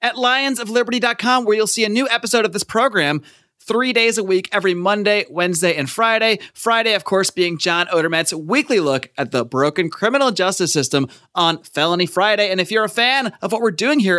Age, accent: 30-49, American